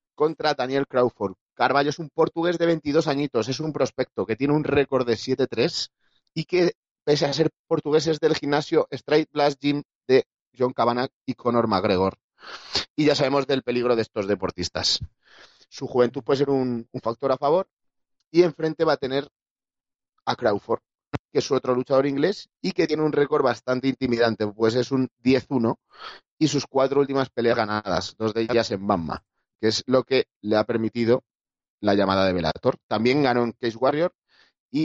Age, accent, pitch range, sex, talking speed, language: 30-49, Spanish, 115-145 Hz, male, 185 wpm, Spanish